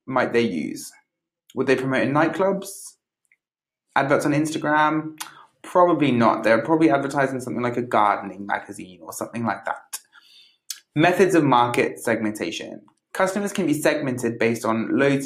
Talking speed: 140 wpm